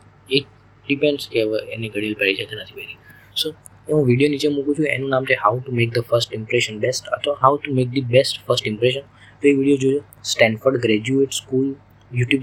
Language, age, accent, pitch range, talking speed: Gujarati, 20-39, native, 110-135 Hz, 210 wpm